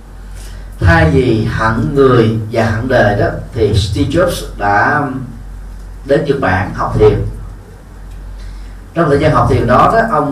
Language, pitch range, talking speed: Vietnamese, 95-130 Hz, 145 wpm